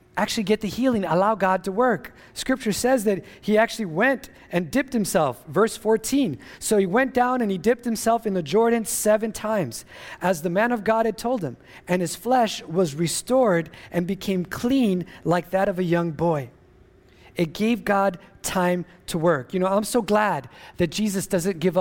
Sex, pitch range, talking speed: male, 175-220 Hz, 190 wpm